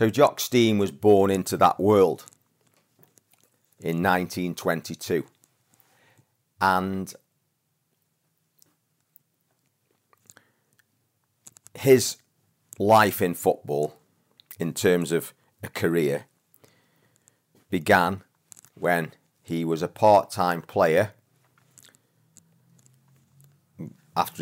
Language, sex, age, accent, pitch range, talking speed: English, male, 40-59, British, 90-130 Hz, 70 wpm